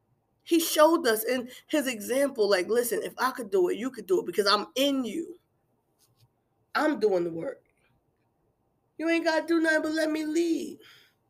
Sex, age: female, 20-39